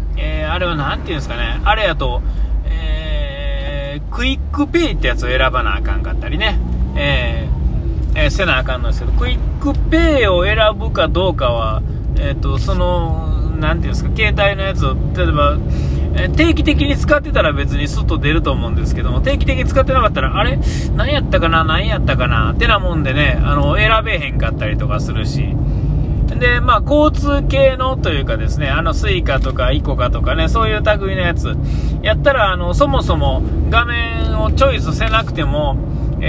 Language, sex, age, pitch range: Japanese, male, 20-39, 70-80 Hz